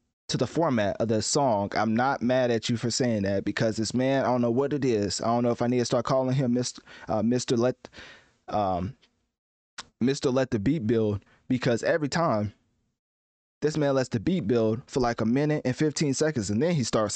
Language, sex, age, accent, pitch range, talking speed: English, male, 20-39, American, 110-135 Hz, 220 wpm